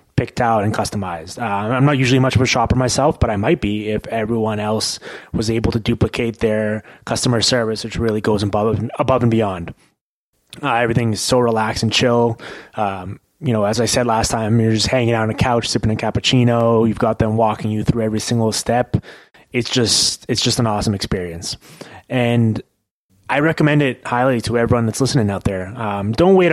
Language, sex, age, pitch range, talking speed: English, male, 20-39, 110-130 Hz, 200 wpm